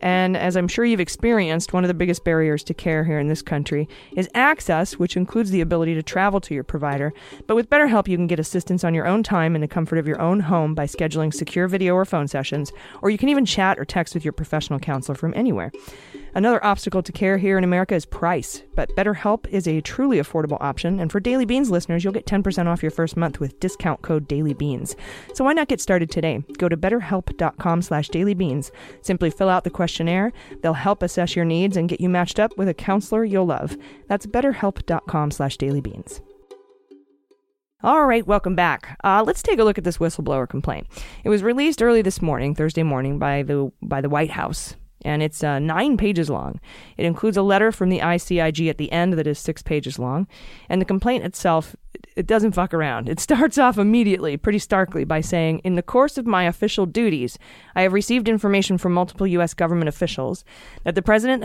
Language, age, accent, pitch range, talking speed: English, 30-49, American, 160-200 Hz, 210 wpm